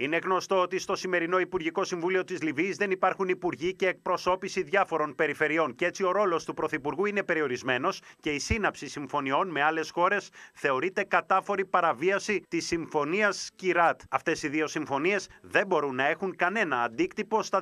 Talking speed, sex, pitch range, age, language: 165 wpm, male, 145-190 Hz, 30-49, Greek